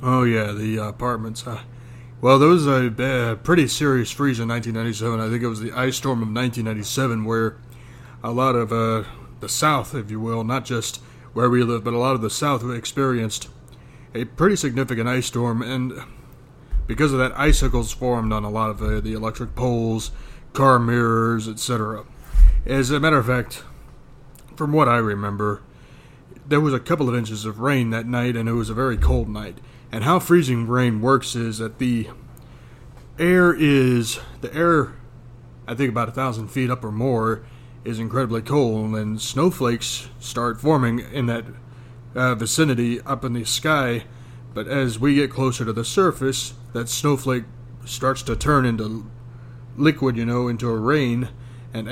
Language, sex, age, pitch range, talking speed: English, male, 30-49, 115-130 Hz, 175 wpm